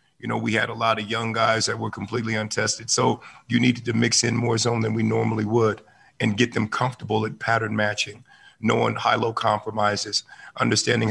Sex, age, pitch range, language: male, 50-69, 110-125 Hz, English